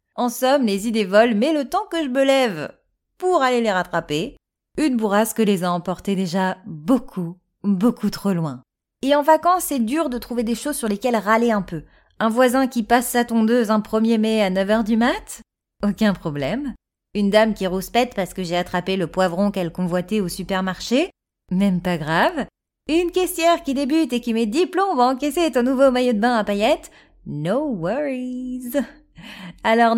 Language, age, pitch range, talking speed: French, 30-49, 190-265 Hz, 190 wpm